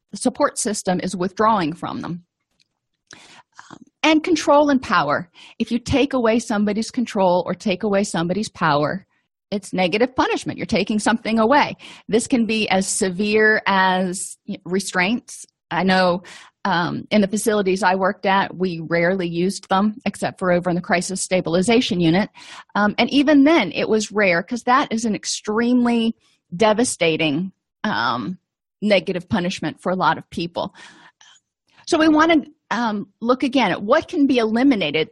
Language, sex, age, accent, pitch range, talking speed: English, female, 40-59, American, 185-235 Hz, 155 wpm